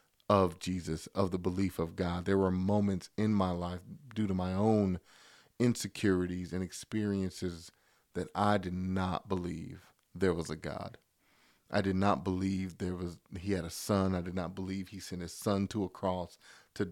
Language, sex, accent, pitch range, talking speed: English, male, American, 90-105 Hz, 180 wpm